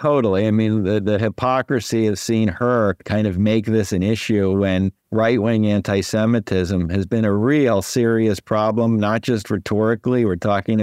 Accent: American